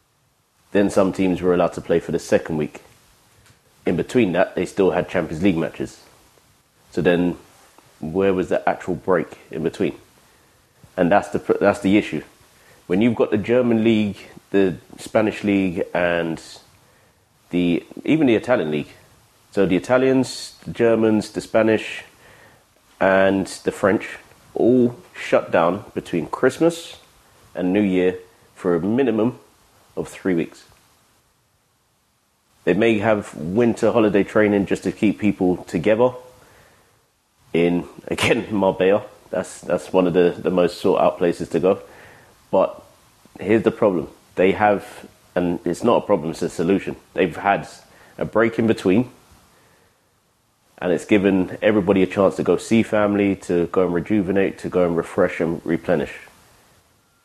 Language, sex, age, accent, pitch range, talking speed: English, male, 30-49, British, 90-110 Hz, 145 wpm